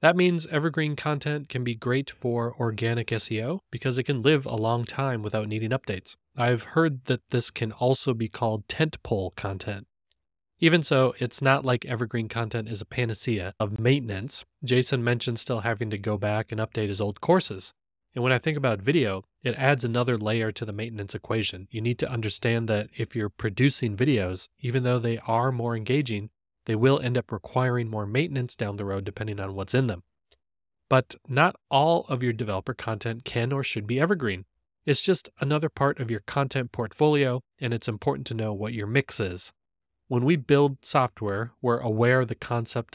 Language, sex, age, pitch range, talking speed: English, male, 30-49, 105-135 Hz, 190 wpm